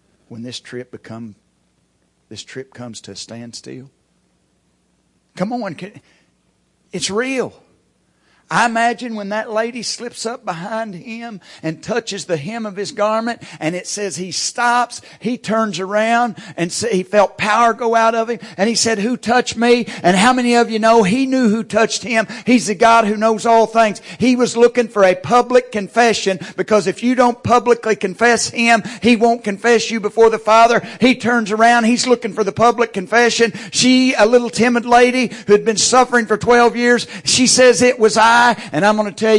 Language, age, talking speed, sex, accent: English, 50-69, 185 wpm, male, American